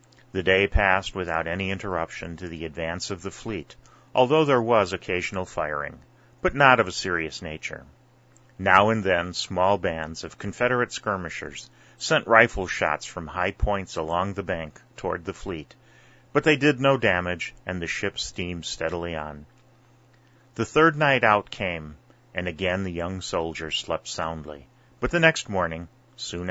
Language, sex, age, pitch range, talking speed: English, male, 30-49, 85-120 Hz, 160 wpm